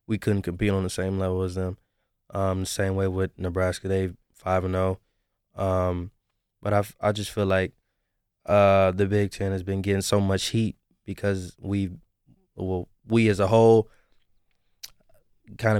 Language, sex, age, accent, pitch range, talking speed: English, male, 20-39, American, 95-105 Hz, 165 wpm